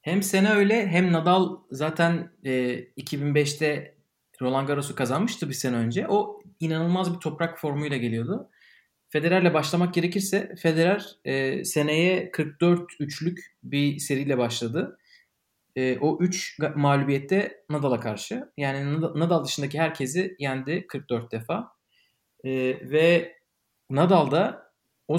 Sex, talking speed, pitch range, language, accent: male, 115 wpm, 135-170 Hz, Turkish, native